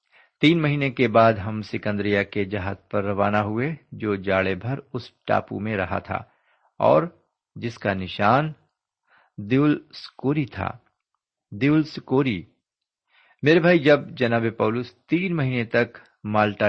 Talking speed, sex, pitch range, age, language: 115 wpm, male, 100-140 Hz, 50-69, Urdu